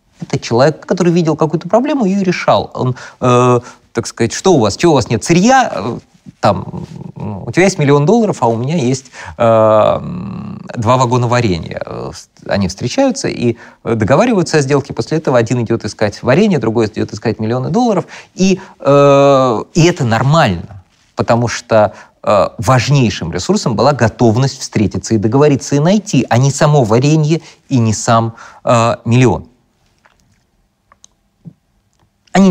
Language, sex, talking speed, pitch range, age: Russian, male, 145 wpm, 105-155 Hz, 30-49